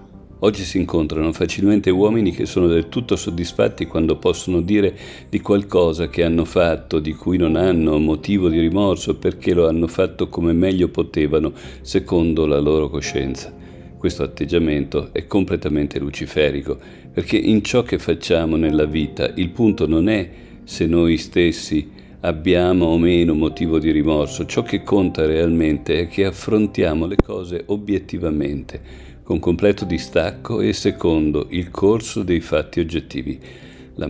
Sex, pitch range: male, 75-95 Hz